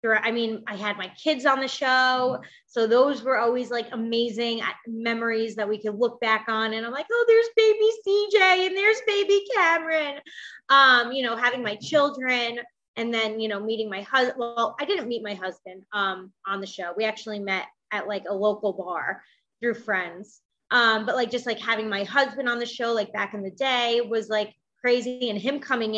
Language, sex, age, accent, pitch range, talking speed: English, female, 20-39, American, 215-265 Hz, 205 wpm